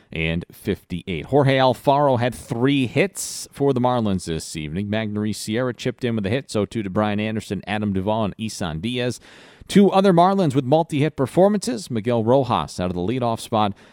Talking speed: 180 wpm